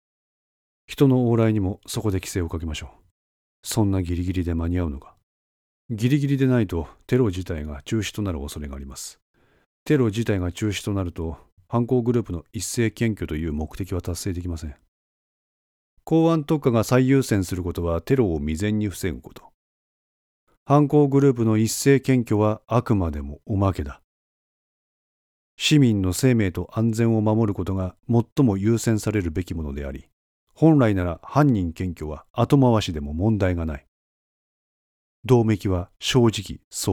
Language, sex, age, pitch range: Japanese, male, 40-59, 85-115 Hz